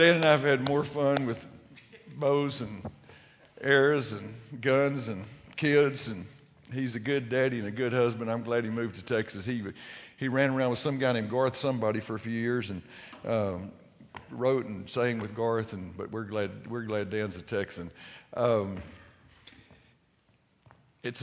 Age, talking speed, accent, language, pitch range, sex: 50-69, 175 wpm, American, English, 115-145 Hz, male